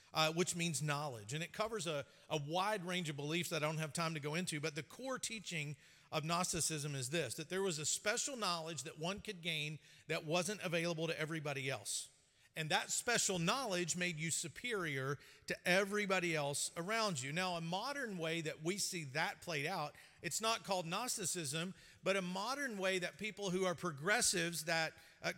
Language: English